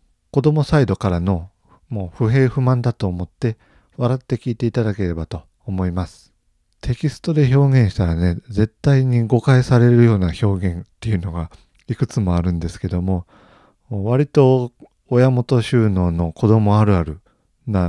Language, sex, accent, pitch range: Japanese, male, native, 90-120 Hz